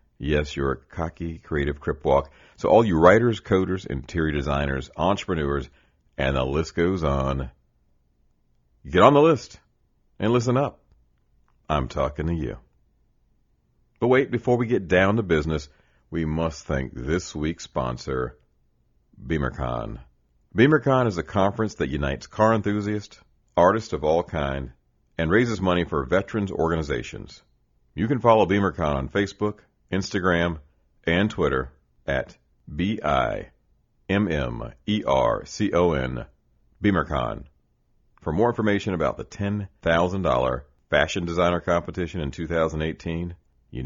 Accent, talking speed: American, 120 wpm